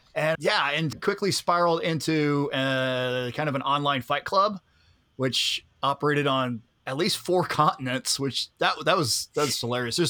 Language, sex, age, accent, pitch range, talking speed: English, male, 20-39, American, 130-165 Hz, 165 wpm